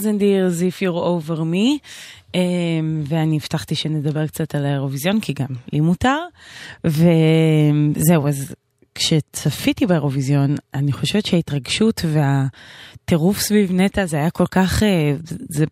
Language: Hebrew